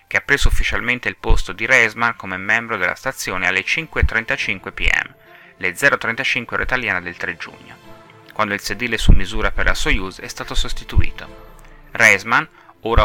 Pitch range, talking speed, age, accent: 105-130 Hz, 160 wpm, 30-49, native